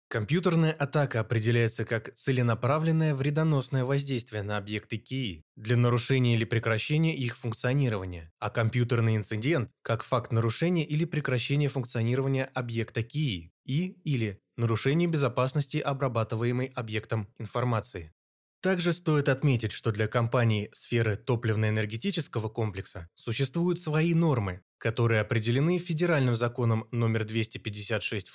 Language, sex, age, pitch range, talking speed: Russian, male, 20-39, 110-145 Hz, 110 wpm